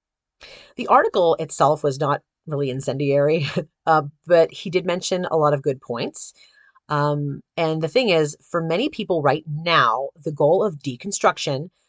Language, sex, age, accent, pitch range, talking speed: English, female, 30-49, American, 140-170 Hz, 155 wpm